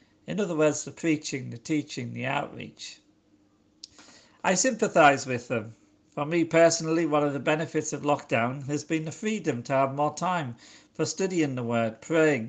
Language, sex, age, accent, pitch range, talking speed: English, male, 50-69, British, 125-160 Hz, 170 wpm